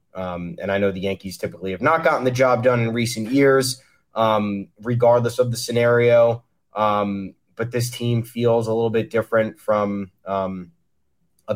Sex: male